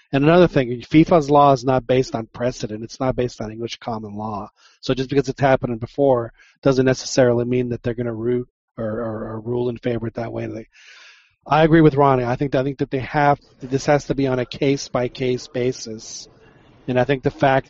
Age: 40-59